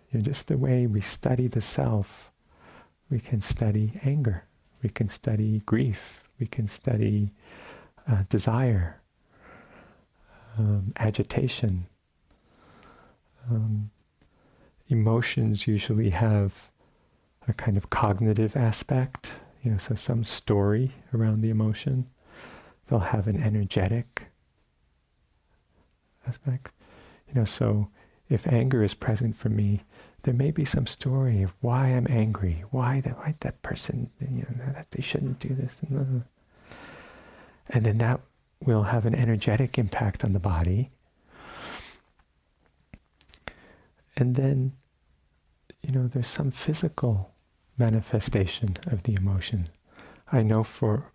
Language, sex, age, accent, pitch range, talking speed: English, male, 50-69, American, 100-125 Hz, 115 wpm